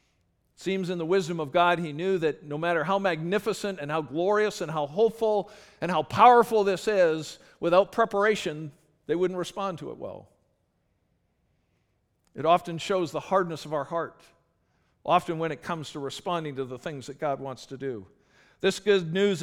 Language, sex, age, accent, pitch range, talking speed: English, male, 50-69, American, 150-185 Hz, 175 wpm